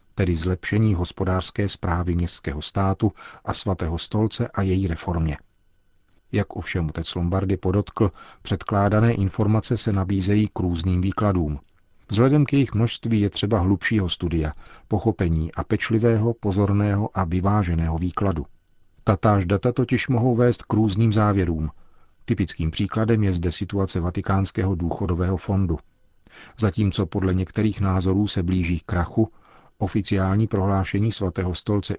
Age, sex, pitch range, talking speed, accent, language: 40-59, male, 90-105 Hz, 125 wpm, native, Czech